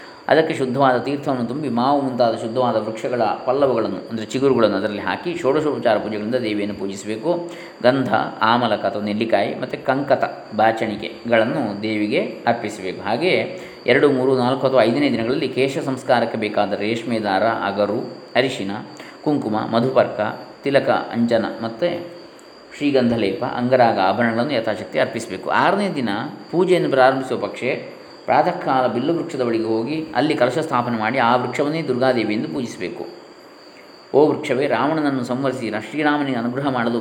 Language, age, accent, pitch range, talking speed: Kannada, 20-39, native, 110-135 Hz, 120 wpm